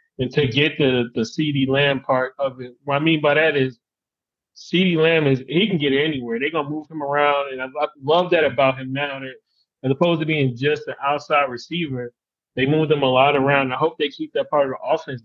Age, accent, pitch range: 20-39, American, 130-150 Hz